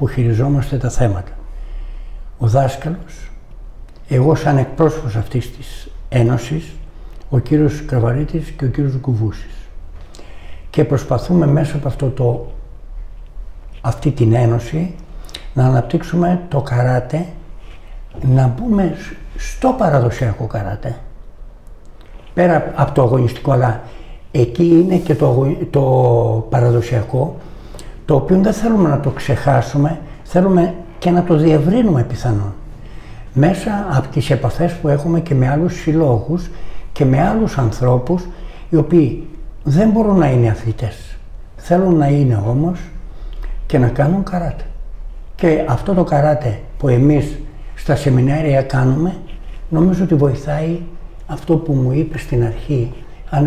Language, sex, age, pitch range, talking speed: Greek, male, 60-79, 120-160 Hz, 120 wpm